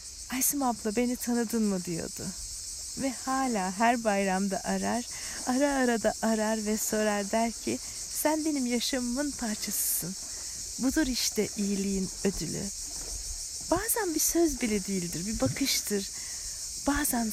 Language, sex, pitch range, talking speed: Turkish, female, 200-255 Hz, 120 wpm